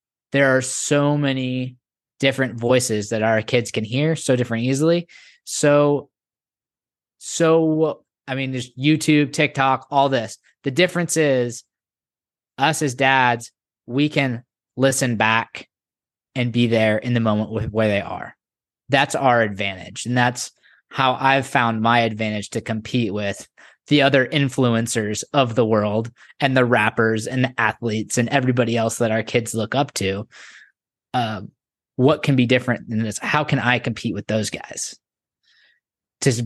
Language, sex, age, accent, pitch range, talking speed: English, male, 20-39, American, 110-135 Hz, 150 wpm